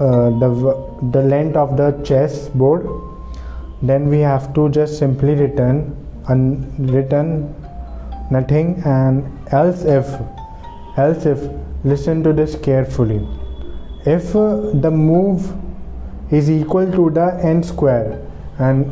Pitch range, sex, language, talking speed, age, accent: 130-150 Hz, male, English, 125 wpm, 20-39, Indian